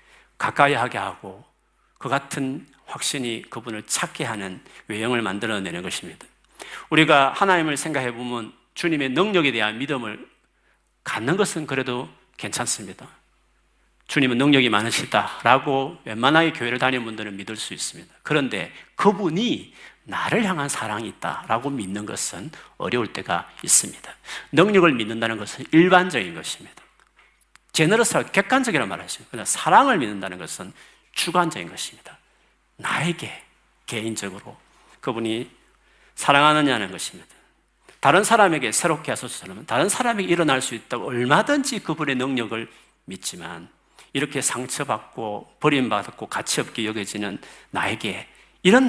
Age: 40-59